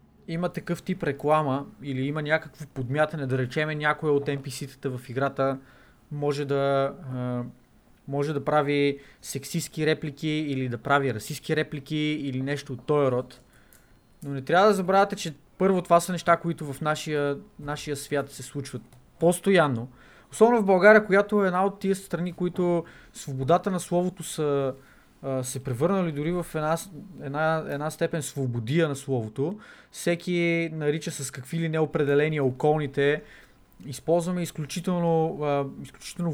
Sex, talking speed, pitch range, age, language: male, 140 wpm, 140-170 Hz, 20-39, Bulgarian